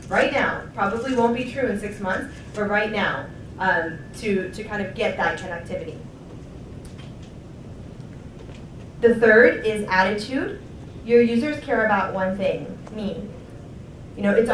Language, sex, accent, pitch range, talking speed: English, female, American, 195-235 Hz, 140 wpm